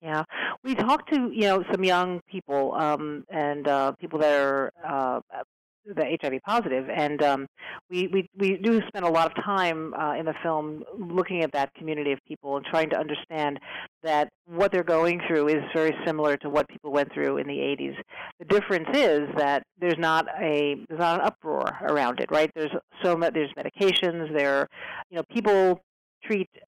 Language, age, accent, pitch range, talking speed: English, 40-59, American, 145-175 Hz, 190 wpm